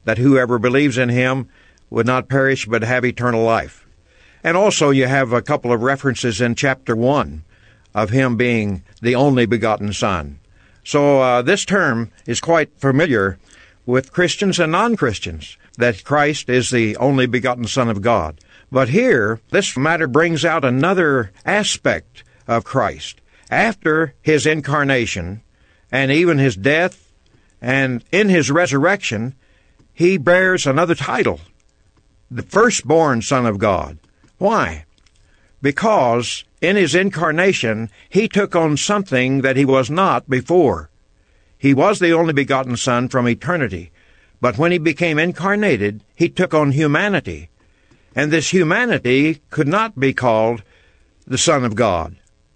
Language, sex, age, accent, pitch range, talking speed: English, male, 60-79, American, 110-165 Hz, 140 wpm